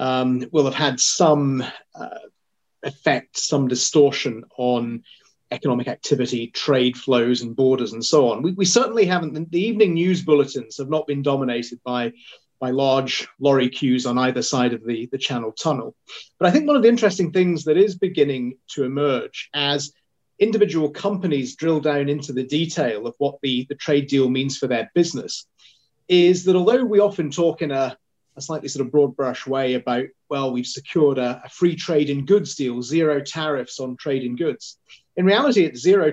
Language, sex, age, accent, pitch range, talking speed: English, male, 30-49, British, 130-160 Hz, 185 wpm